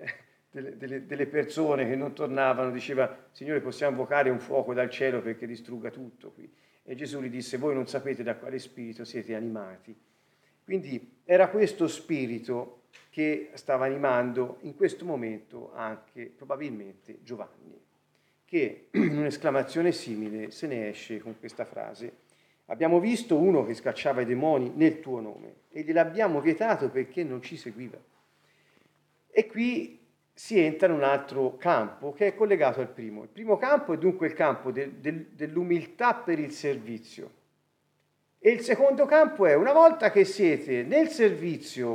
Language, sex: Italian, male